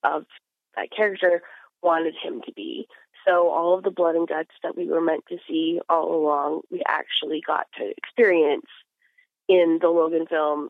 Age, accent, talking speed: 30-49, American, 175 wpm